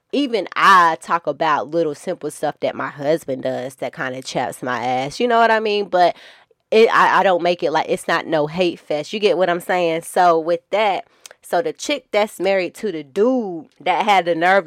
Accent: American